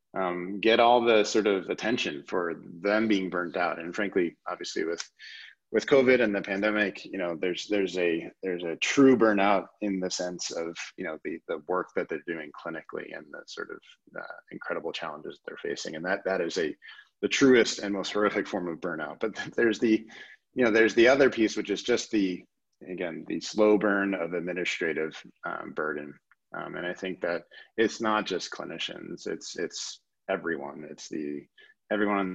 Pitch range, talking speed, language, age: 90-120 Hz, 185 wpm, English, 30-49